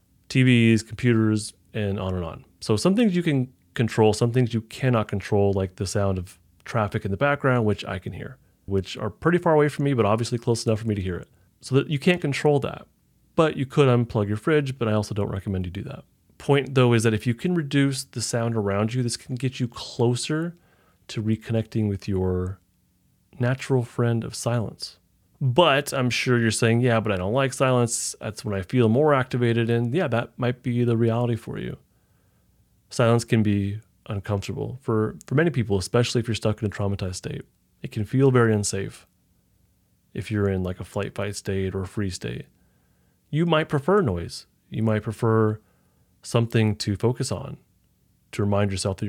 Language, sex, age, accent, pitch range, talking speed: English, male, 30-49, American, 100-130 Hz, 200 wpm